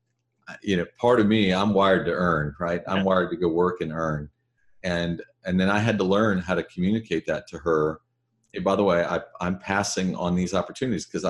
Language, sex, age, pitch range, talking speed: English, male, 40-59, 80-100 Hz, 220 wpm